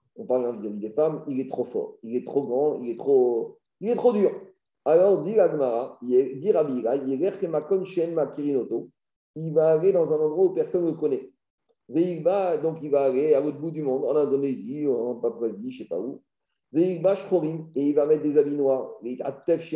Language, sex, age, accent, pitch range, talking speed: French, male, 50-69, French, 150-215 Hz, 175 wpm